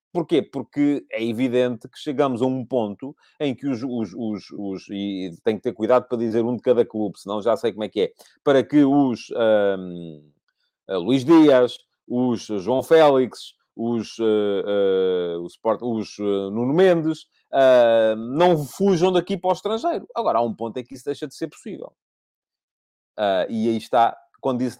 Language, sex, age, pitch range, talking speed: Portuguese, male, 30-49, 115-175 Hz, 180 wpm